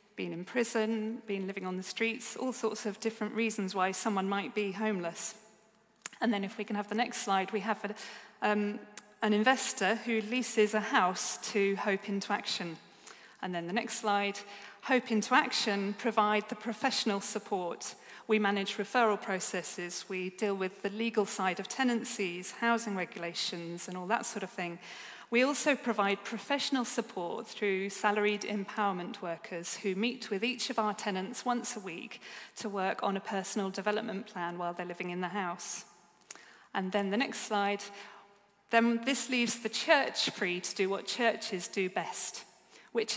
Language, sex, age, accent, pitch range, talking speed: English, female, 40-59, British, 195-230 Hz, 170 wpm